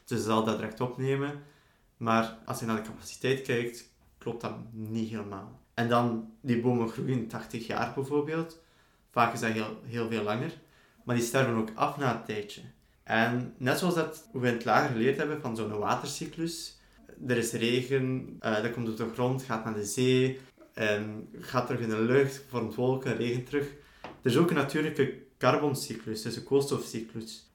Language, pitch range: Dutch, 115-135 Hz